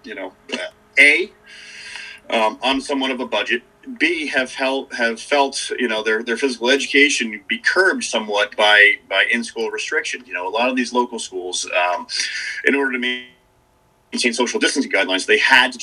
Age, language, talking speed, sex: 30-49, English, 175 wpm, male